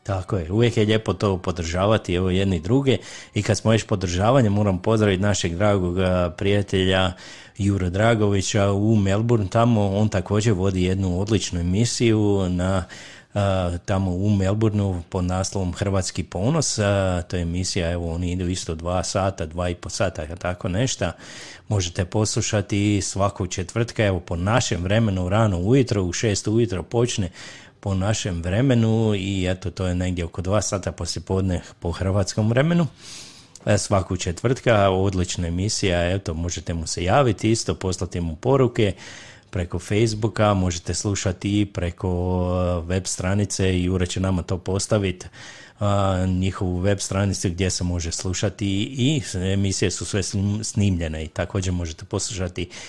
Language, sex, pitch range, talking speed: Croatian, male, 90-105 Hz, 145 wpm